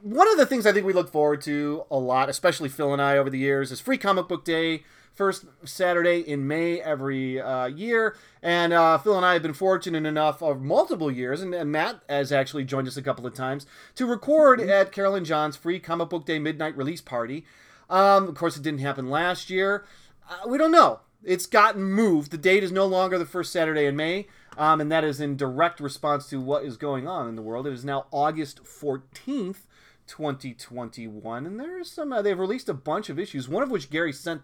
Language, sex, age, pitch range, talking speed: English, male, 30-49, 140-175 Hz, 220 wpm